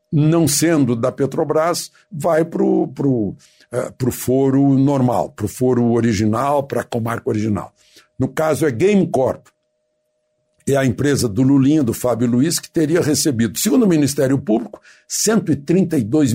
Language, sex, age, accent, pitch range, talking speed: Portuguese, male, 60-79, Brazilian, 120-155 Hz, 150 wpm